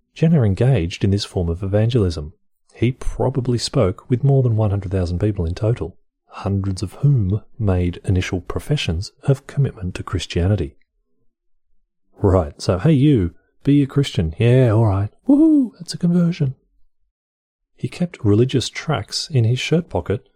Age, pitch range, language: 30-49, 95-135 Hz, English